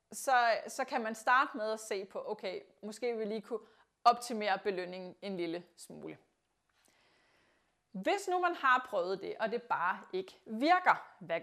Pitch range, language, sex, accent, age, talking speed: 210-280 Hz, Danish, female, native, 30-49, 165 wpm